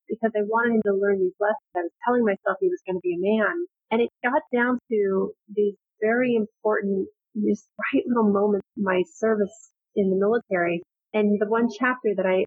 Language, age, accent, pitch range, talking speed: English, 30-49, American, 190-225 Hz, 205 wpm